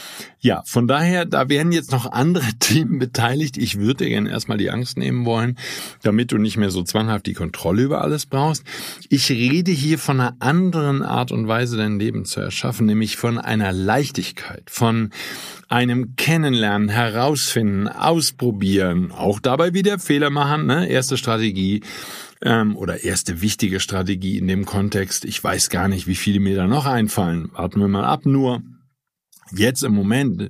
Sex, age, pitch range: male, 50-69, 105-150 Hz